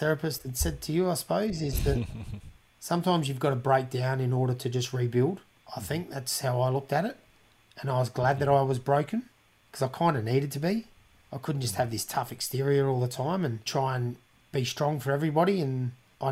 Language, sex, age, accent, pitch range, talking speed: English, male, 30-49, Australian, 125-140 Hz, 230 wpm